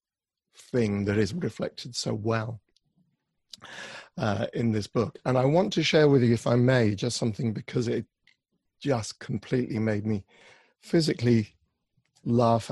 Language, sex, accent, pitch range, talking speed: English, male, British, 105-125 Hz, 140 wpm